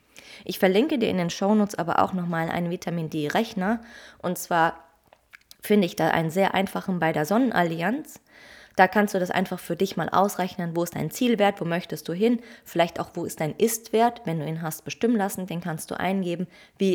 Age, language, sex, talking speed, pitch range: 20-39, German, female, 200 wpm, 160-200 Hz